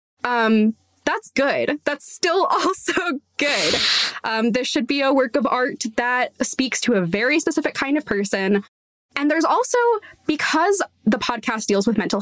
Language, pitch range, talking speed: English, 220-300 Hz, 160 wpm